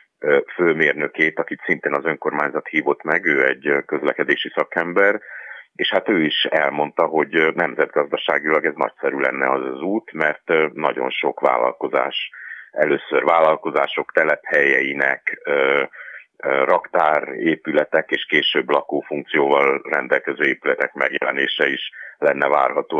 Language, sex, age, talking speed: Hungarian, male, 50-69, 110 wpm